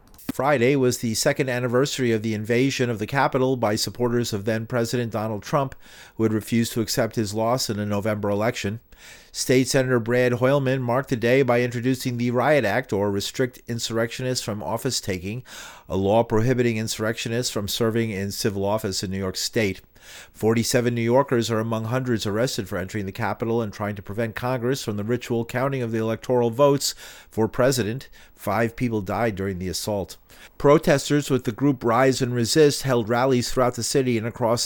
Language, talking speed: English, 180 wpm